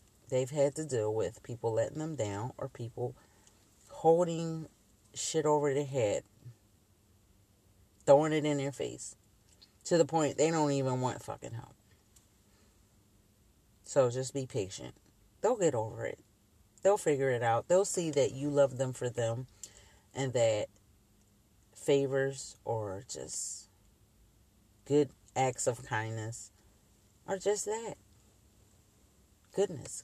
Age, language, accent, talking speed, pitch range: 40-59, English, American, 125 wpm, 105-160 Hz